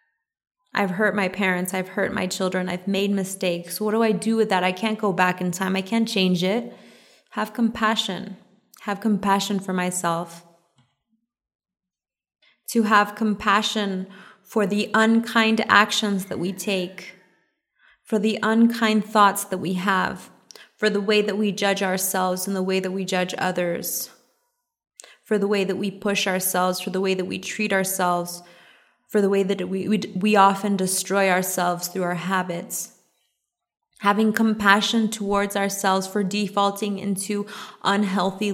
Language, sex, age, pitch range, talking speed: English, female, 20-39, 185-215 Hz, 155 wpm